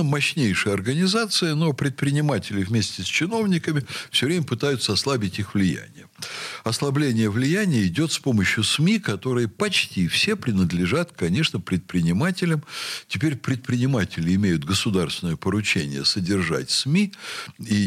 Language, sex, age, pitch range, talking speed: Russian, male, 60-79, 100-160 Hz, 110 wpm